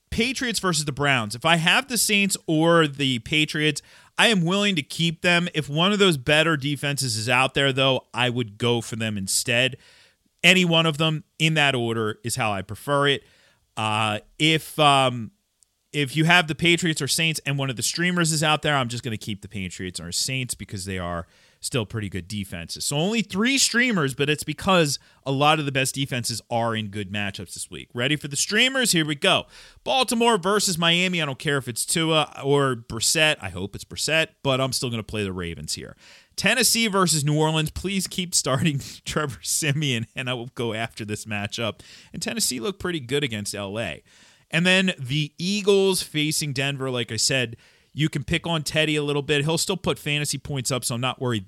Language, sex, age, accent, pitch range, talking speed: English, male, 30-49, American, 115-170 Hz, 210 wpm